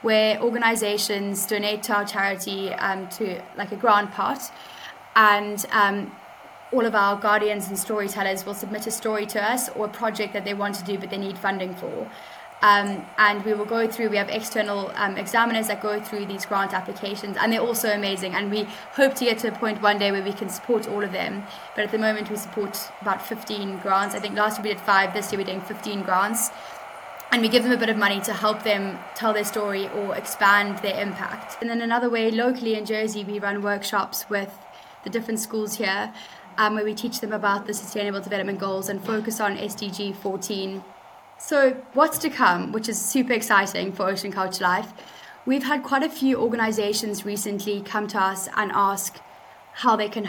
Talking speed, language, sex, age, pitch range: 210 wpm, English, female, 10-29, 200-225 Hz